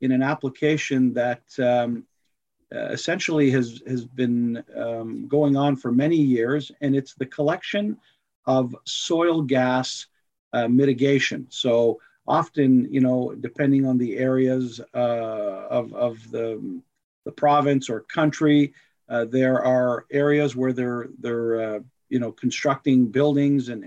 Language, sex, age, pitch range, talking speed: English, male, 50-69, 120-145 Hz, 135 wpm